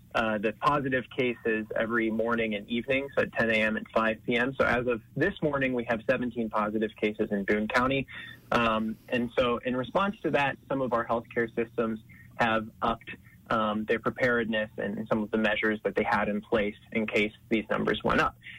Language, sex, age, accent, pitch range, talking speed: English, male, 20-39, American, 110-130 Hz, 195 wpm